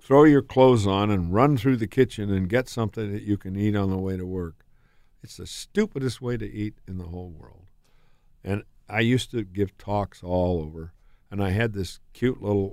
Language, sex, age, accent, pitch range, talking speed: English, male, 60-79, American, 90-110 Hz, 210 wpm